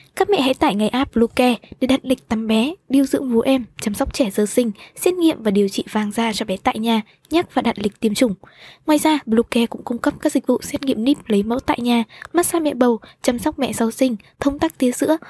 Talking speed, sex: 260 wpm, female